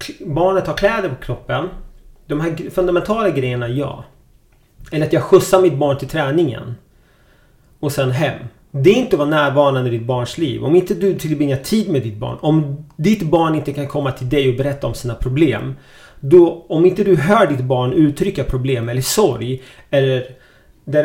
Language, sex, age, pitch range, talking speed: Swedish, male, 30-49, 125-155 Hz, 185 wpm